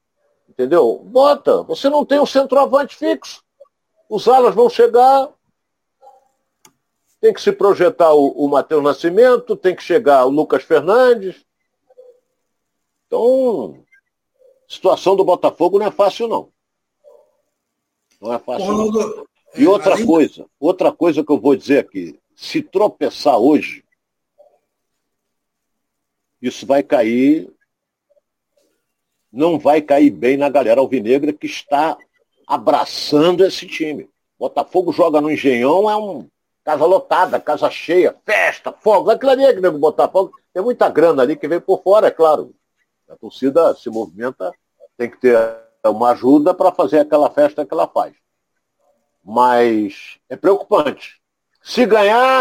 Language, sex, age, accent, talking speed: Portuguese, male, 60-79, Brazilian, 125 wpm